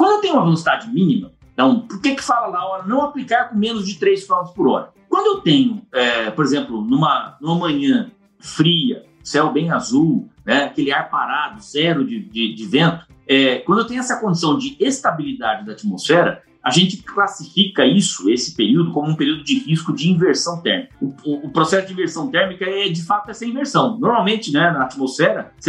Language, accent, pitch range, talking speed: Portuguese, Brazilian, 160-245 Hz, 190 wpm